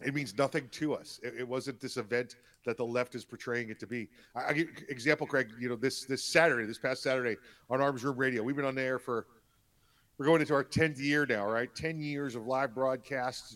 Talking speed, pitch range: 240 wpm, 120-150 Hz